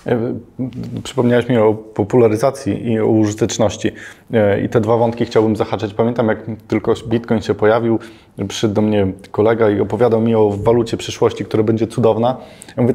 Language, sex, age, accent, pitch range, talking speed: Polish, male, 20-39, native, 110-125 Hz, 160 wpm